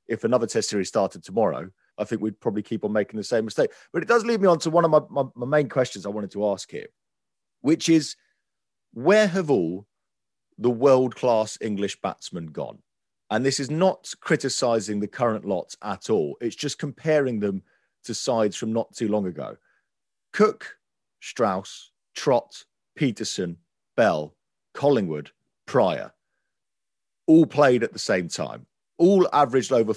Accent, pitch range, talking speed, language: British, 110-155 Hz, 165 wpm, English